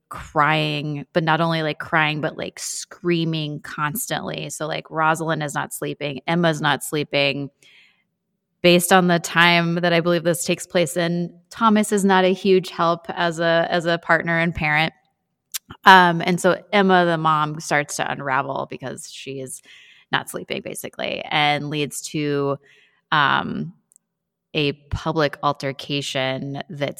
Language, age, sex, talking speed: English, 20-39, female, 145 wpm